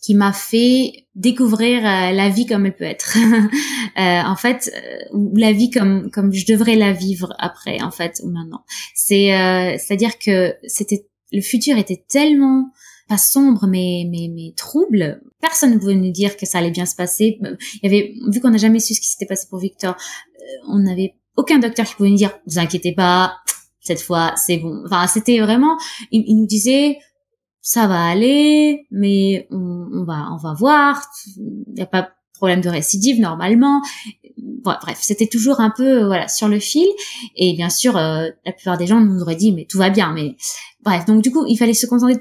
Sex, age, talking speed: female, 20-39, 200 wpm